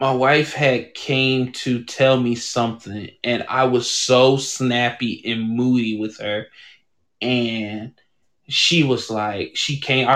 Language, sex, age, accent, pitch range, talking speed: English, male, 20-39, American, 125-160 Hz, 140 wpm